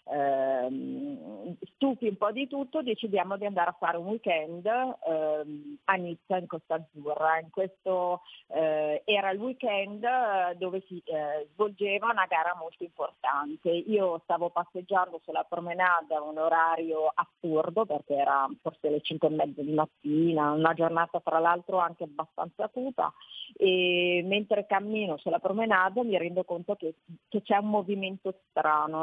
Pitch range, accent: 160-205 Hz, native